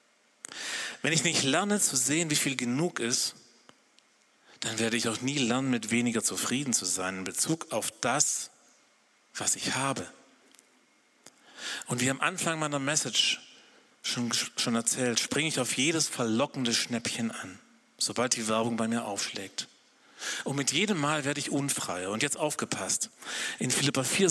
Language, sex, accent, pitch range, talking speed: German, male, German, 120-155 Hz, 155 wpm